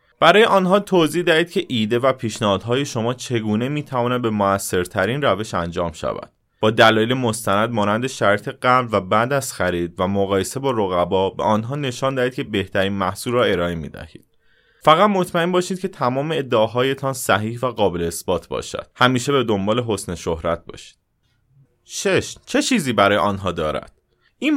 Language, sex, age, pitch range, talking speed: Persian, male, 30-49, 100-140 Hz, 160 wpm